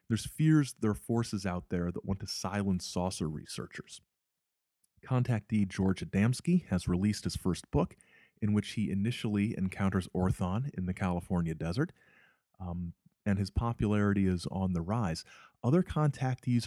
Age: 30-49